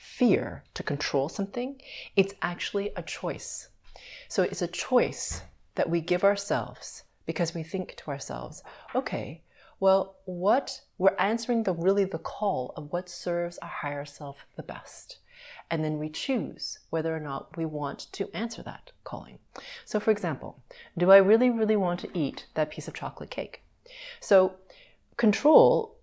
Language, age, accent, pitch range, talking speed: English, 30-49, American, 150-200 Hz, 155 wpm